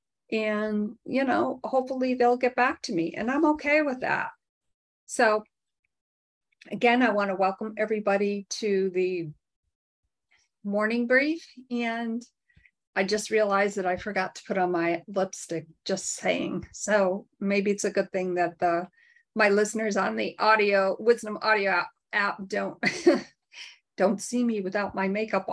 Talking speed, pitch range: 150 wpm, 195-240 Hz